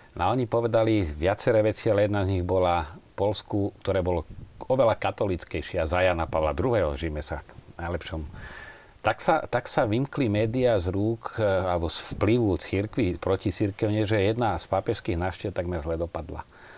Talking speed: 155 wpm